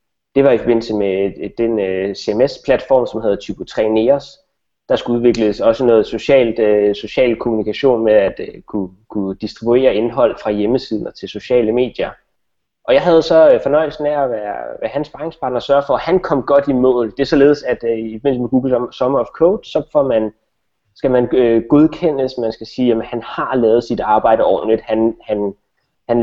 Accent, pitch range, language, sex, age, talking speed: native, 110-145 Hz, Danish, male, 20-39, 190 wpm